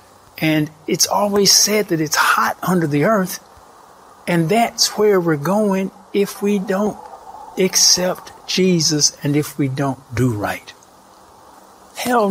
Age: 60-79